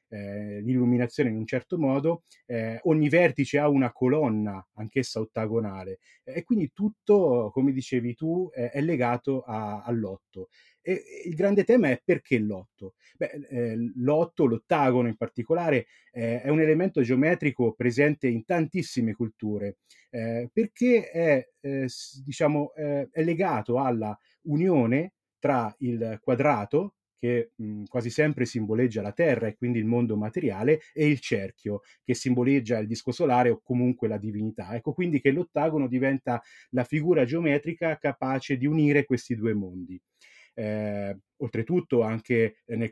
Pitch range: 110-145 Hz